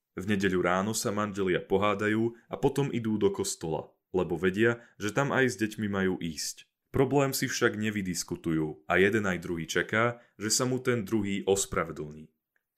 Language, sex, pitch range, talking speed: Slovak, male, 95-120 Hz, 165 wpm